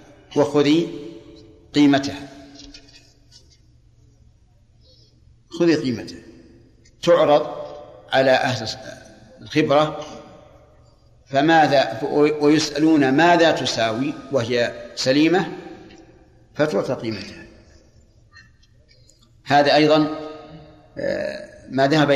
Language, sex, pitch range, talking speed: Arabic, male, 125-155 Hz, 55 wpm